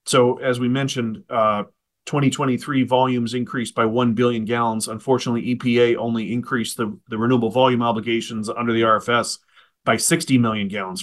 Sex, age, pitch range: male, 40-59, 115-130 Hz